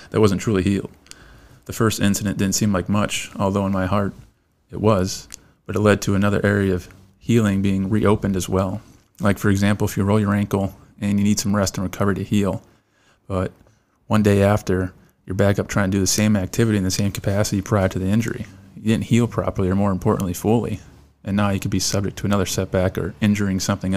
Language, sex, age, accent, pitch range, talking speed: English, male, 30-49, American, 95-105 Hz, 220 wpm